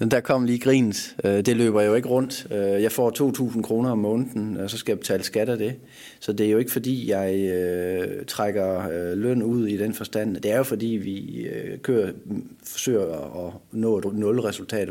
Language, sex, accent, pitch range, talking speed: Danish, male, native, 95-115 Hz, 190 wpm